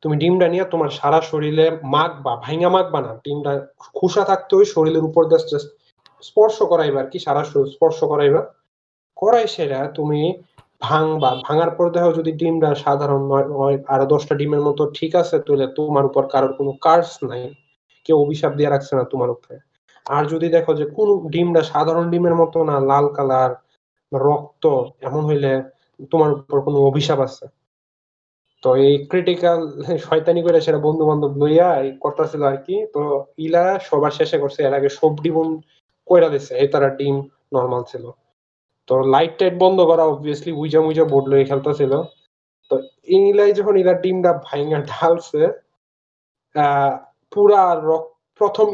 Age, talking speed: 30-49, 50 wpm